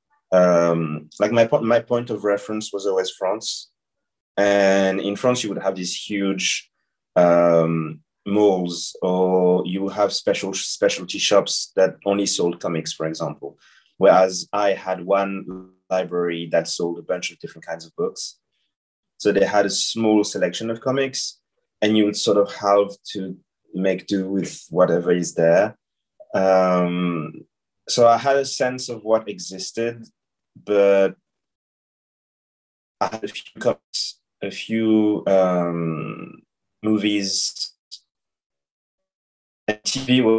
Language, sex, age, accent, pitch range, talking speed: English, male, 30-49, French, 85-105 Hz, 135 wpm